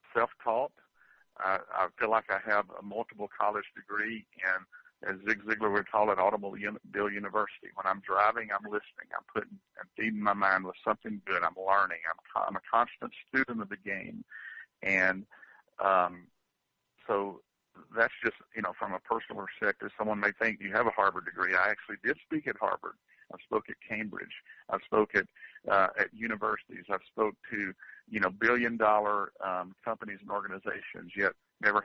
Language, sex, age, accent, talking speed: English, male, 50-69, American, 175 wpm